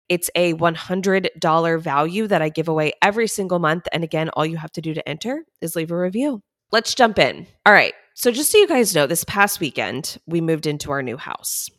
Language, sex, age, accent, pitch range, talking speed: English, female, 20-39, American, 155-200 Hz, 225 wpm